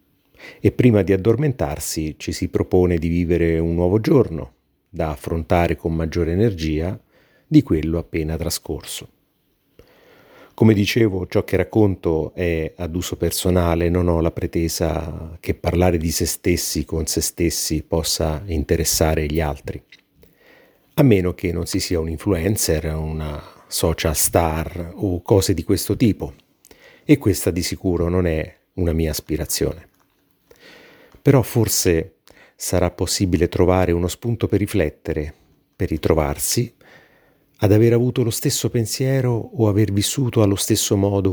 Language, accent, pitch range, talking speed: Italian, native, 80-105 Hz, 135 wpm